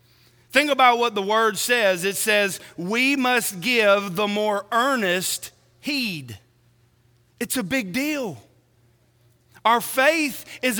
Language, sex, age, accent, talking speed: English, male, 40-59, American, 120 wpm